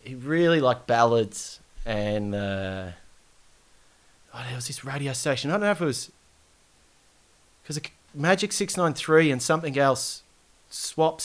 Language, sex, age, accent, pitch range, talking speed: English, male, 20-39, Australian, 100-130 Hz, 135 wpm